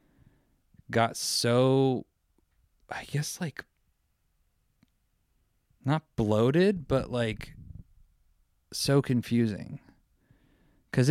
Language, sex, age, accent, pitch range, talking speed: English, male, 30-49, American, 100-125 Hz, 65 wpm